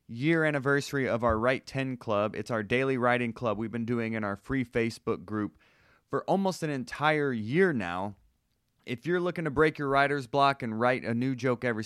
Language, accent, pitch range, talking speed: English, American, 110-145 Hz, 200 wpm